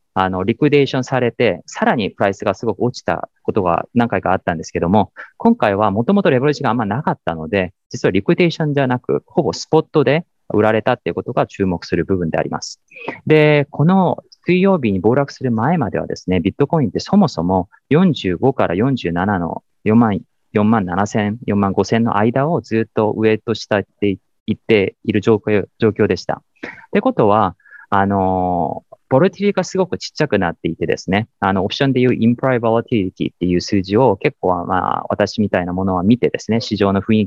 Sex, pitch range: male, 95-130 Hz